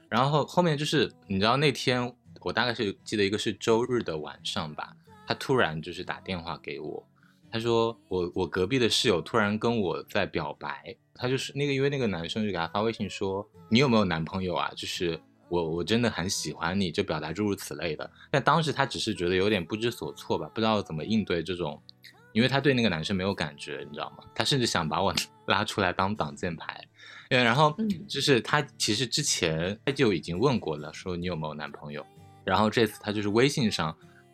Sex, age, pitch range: male, 20-39, 85-115 Hz